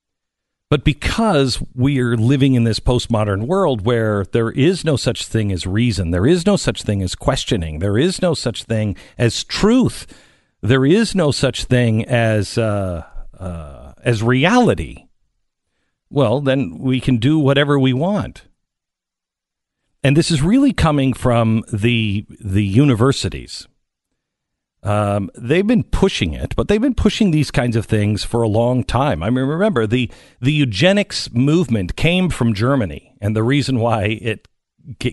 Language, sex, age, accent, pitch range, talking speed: English, male, 50-69, American, 110-140 Hz, 155 wpm